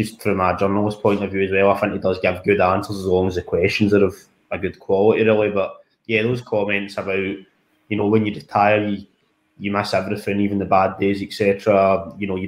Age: 20-39